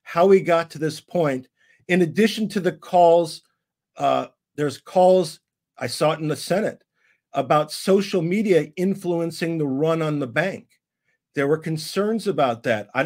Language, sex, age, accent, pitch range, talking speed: English, male, 50-69, American, 150-180 Hz, 160 wpm